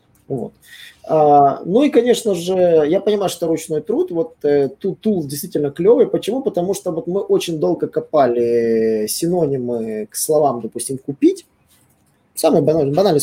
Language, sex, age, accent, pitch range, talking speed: Russian, male, 20-39, native, 145-190 Hz, 140 wpm